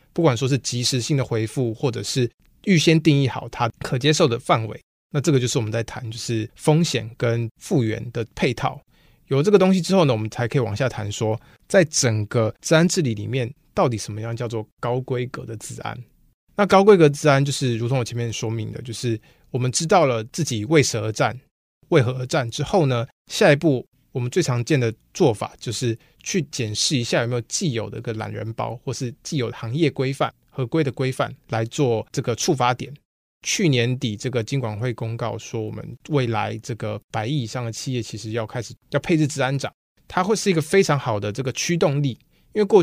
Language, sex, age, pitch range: Chinese, male, 20-39, 115-150 Hz